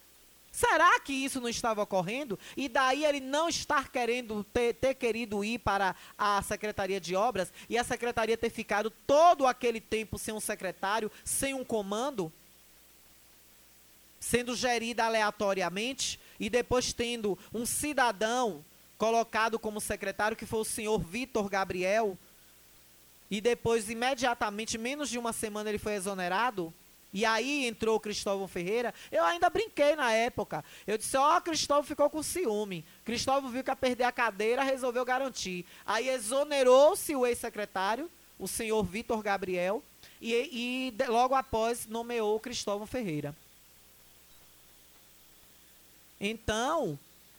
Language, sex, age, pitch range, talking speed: Portuguese, male, 20-39, 190-250 Hz, 135 wpm